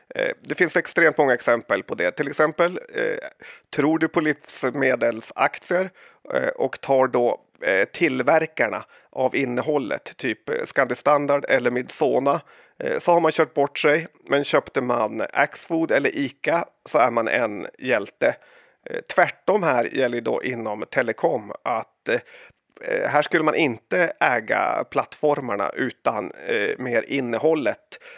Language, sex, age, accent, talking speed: Swedish, male, 30-49, native, 135 wpm